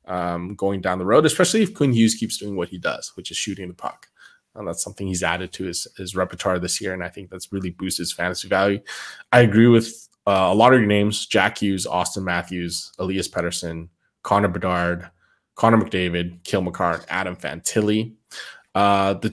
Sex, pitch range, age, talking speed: male, 90-110 Hz, 20-39, 195 wpm